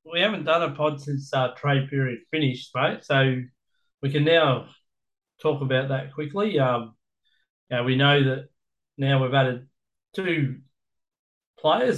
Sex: male